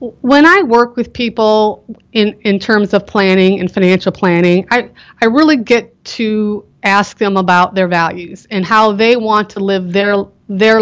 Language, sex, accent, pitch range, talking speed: English, female, American, 200-250 Hz, 170 wpm